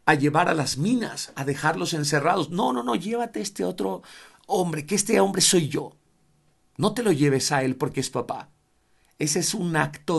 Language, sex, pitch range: Spanish, male, 150-220 Hz